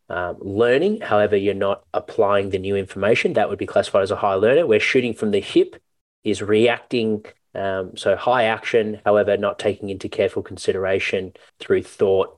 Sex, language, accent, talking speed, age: male, English, Australian, 175 wpm, 20-39